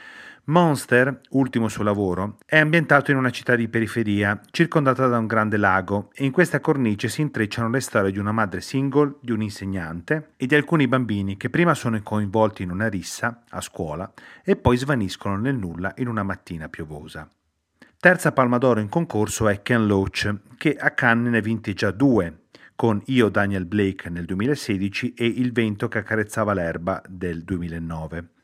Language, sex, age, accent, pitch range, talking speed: Italian, male, 40-59, native, 100-130 Hz, 175 wpm